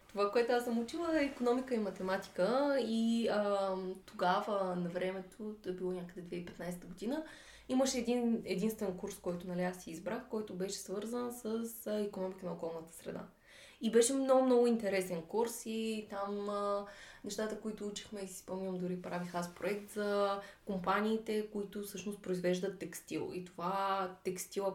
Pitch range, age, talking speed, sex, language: 175-215 Hz, 20-39, 155 wpm, female, Bulgarian